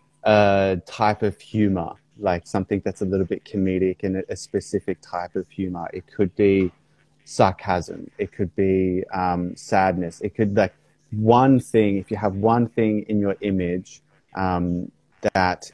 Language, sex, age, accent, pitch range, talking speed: English, male, 20-39, Australian, 90-105 Hz, 155 wpm